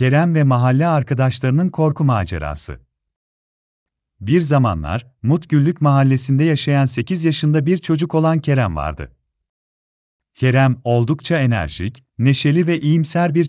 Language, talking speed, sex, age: Turkish, 110 wpm, male, 40-59